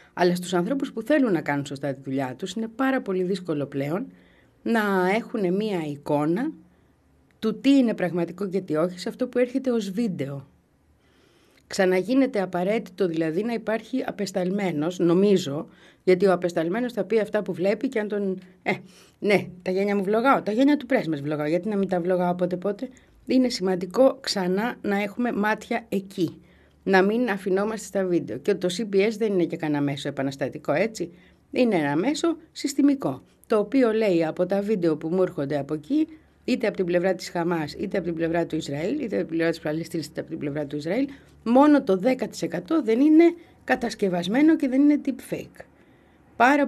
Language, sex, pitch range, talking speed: Greek, female, 170-230 Hz, 180 wpm